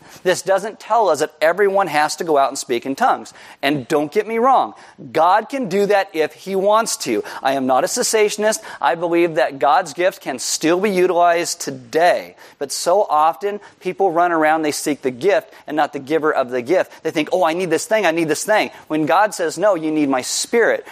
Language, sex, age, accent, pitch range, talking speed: English, male, 40-59, American, 150-195 Hz, 225 wpm